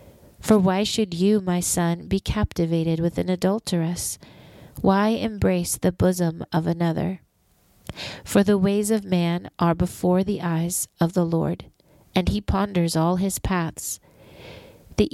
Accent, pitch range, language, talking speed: American, 170-200 Hz, English, 145 wpm